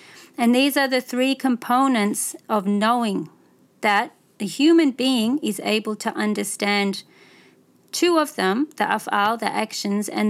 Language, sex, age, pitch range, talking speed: English, female, 30-49, 195-235 Hz, 140 wpm